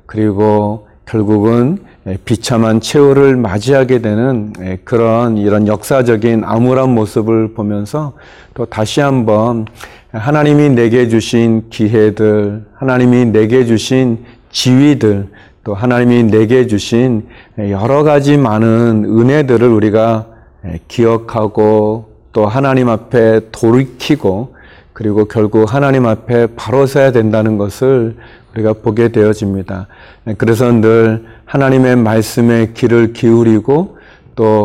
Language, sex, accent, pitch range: Korean, male, native, 110-125 Hz